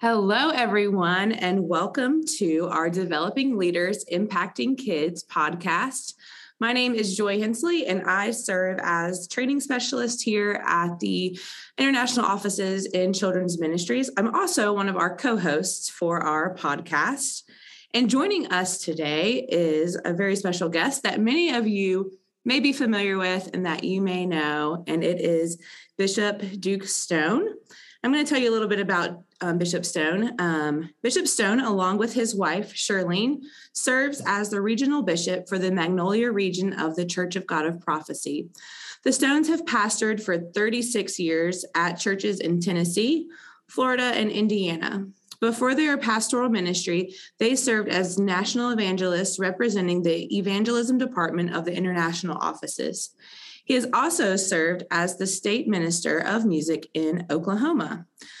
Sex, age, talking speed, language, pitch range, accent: female, 20-39, 150 wpm, English, 175-240 Hz, American